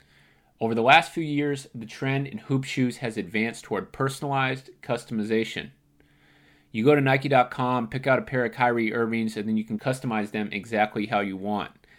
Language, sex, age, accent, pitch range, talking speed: English, male, 30-49, American, 110-130 Hz, 180 wpm